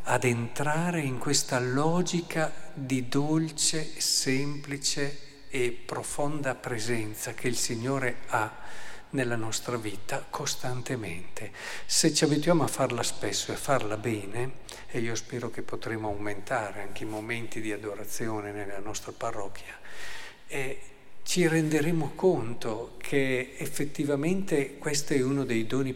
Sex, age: male, 50-69